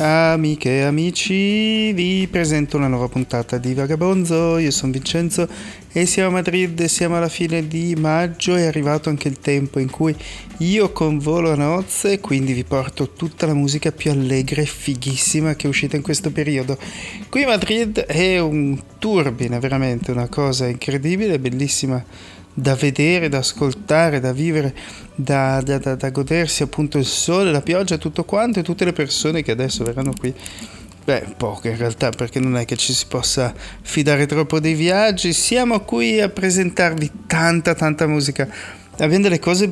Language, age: Italian, 30-49